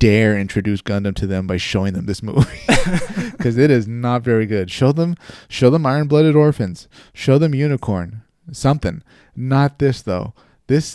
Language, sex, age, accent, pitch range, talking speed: English, male, 30-49, American, 100-135 Hz, 170 wpm